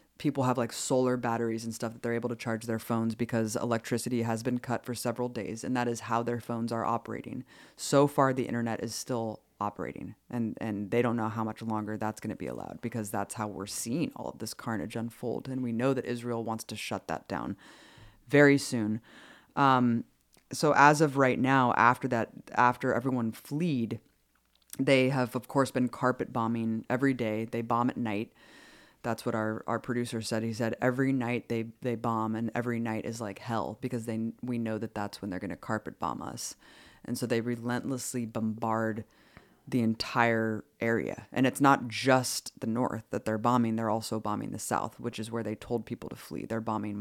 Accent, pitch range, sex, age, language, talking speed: American, 110-125 Hz, female, 20-39, English, 205 wpm